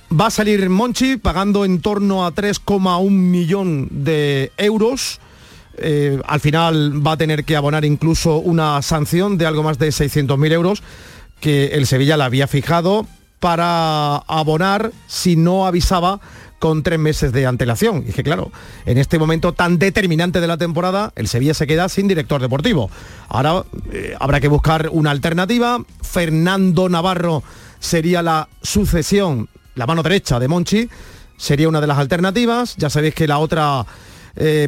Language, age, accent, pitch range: Spanish, 40-59, Spanish, 145-190 Hz